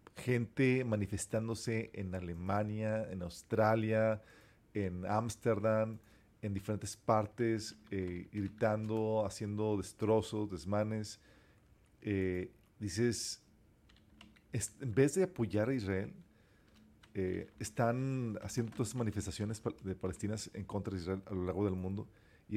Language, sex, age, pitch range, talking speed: Spanish, male, 40-59, 100-115 Hz, 115 wpm